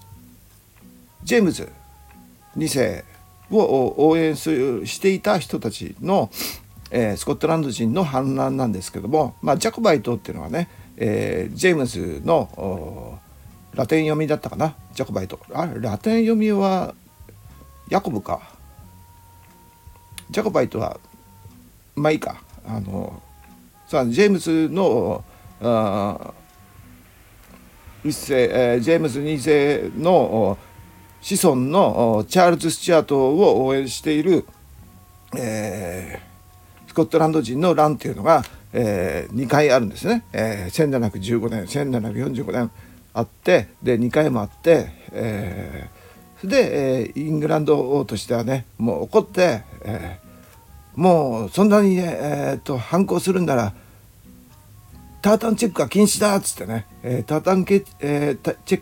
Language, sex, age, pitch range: Japanese, male, 50-69, 95-155 Hz